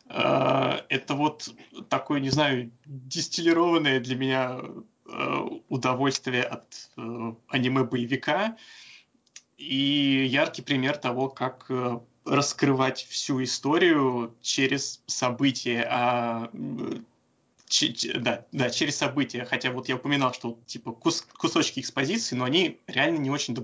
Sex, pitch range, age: male, 125-145 Hz, 20-39